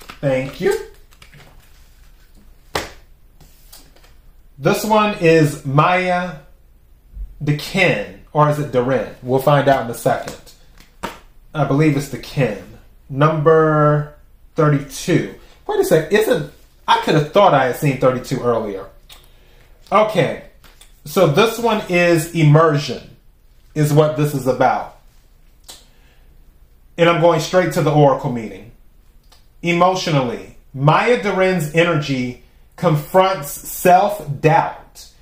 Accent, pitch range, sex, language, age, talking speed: American, 135-180 Hz, male, English, 30-49, 110 wpm